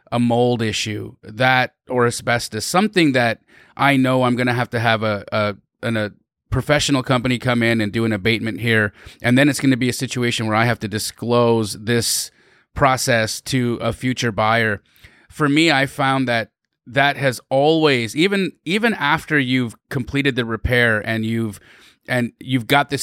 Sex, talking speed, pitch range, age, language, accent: male, 175 wpm, 115-140 Hz, 30-49, English, American